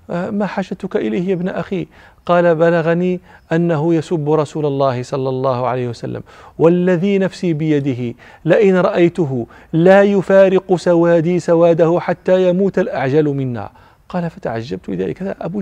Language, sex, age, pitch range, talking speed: Arabic, male, 40-59, 145-185 Hz, 125 wpm